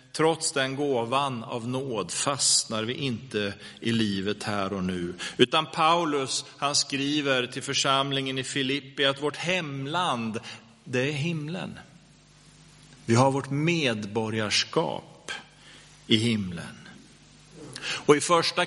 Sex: male